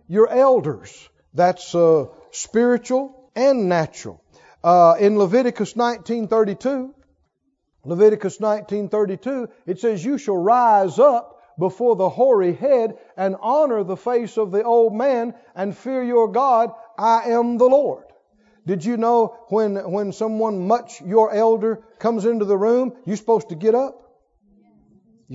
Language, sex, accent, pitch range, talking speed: English, male, American, 175-235 Hz, 135 wpm